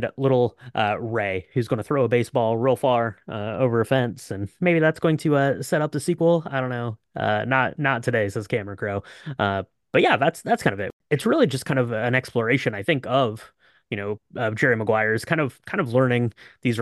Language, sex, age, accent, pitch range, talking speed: English, male, 20-39, American, 105-145 Hz, 230 wpm